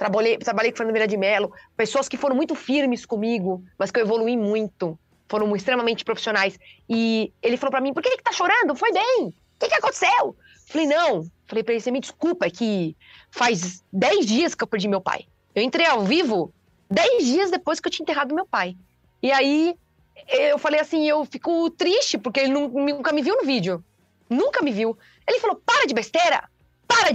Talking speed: 200 wpm